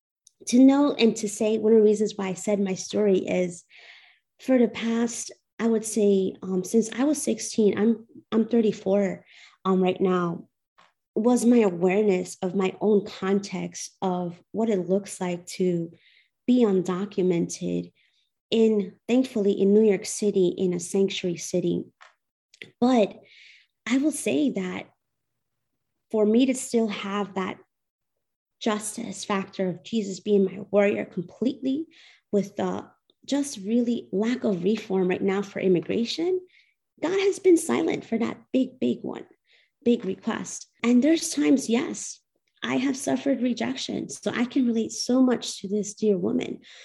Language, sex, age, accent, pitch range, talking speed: English, female, 30-49, American, 195-240 Hz, 150 wpm